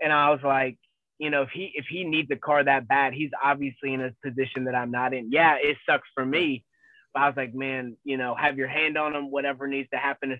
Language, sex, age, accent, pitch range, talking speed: English, male, 20-39, American, 135-150 Hz, 265 wpm